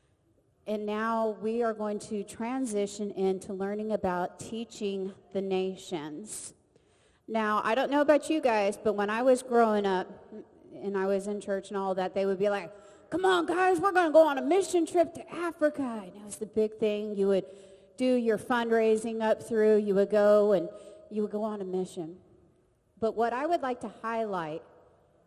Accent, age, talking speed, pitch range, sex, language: American, 40-59, 190 wpm, 190-240 Hz, female, English